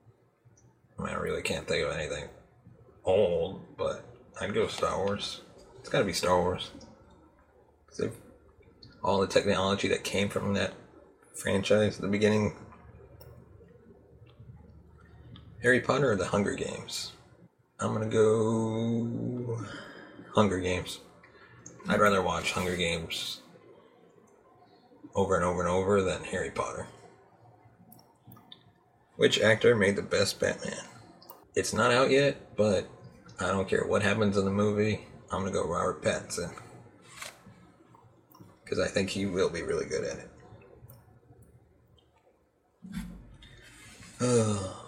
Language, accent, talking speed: English, American, 115 wpm